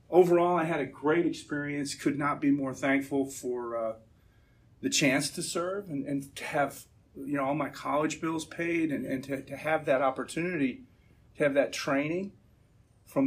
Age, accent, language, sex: 40-59, American, English, male